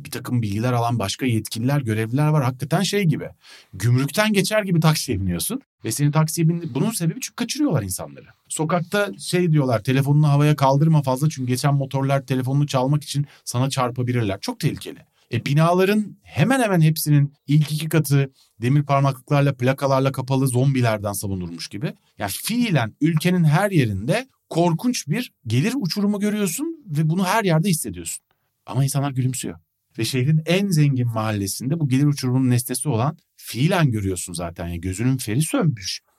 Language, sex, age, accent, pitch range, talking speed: Turkish, male, 40-59, native, 120-160 Hz, 155 wpm